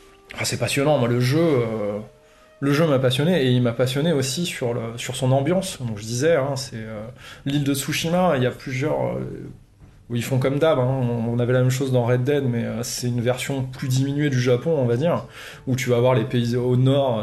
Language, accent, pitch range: French, French, 120-140 Hz